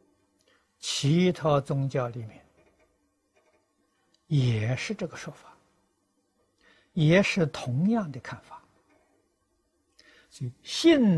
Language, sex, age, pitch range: Chinese, male, 60-79, 120-170 Hz